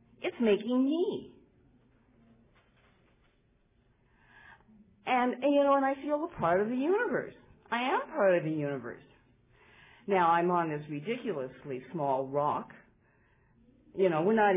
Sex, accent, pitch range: female, American, 135-190 Hz